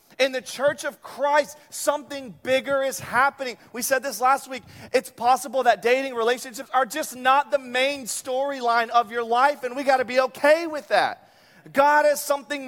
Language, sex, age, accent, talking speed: English, male, 30-49, American, 185 wpm